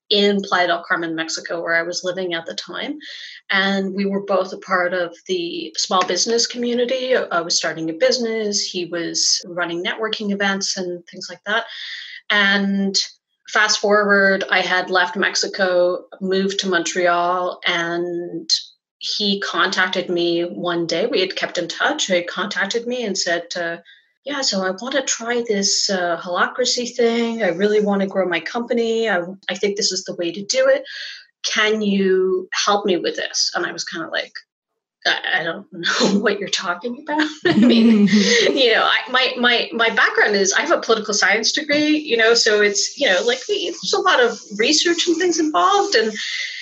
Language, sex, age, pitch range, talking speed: English, female, 30-49, 185-250 Hz, 185 wpm